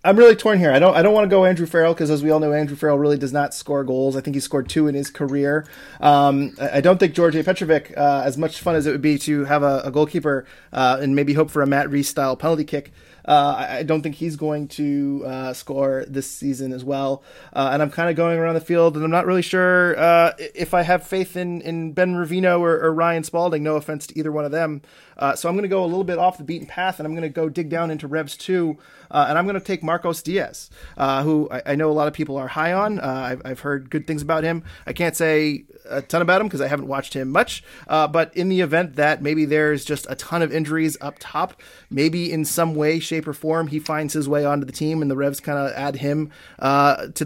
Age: 20-39